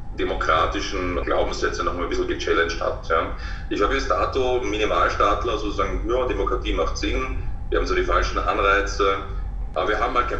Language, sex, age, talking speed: German, male, 30-49, 180 wpm